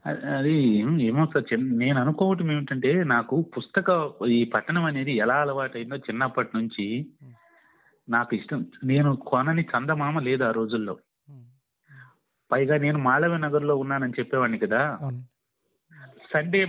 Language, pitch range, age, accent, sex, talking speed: Telugu, 125-155 Hz, 30-49, native, male, 110 wpm